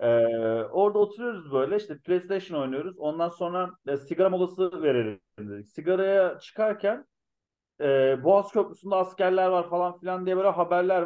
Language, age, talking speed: Turkish, 40-59, 140 wpm